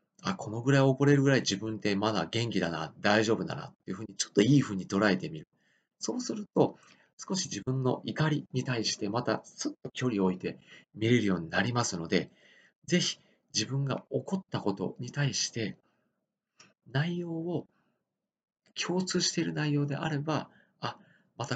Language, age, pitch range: Japanese, 40-59, 100-140 Hz